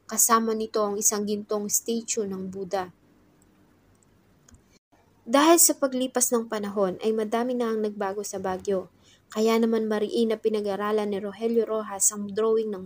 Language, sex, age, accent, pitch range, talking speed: English, female, 20-39, Filipino, 205-235 Hz, 145 wpm